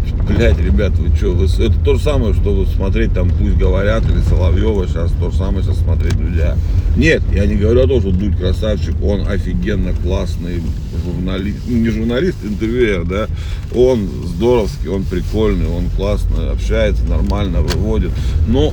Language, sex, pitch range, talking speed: Russian, male, 85-95 Hz, 155 wpm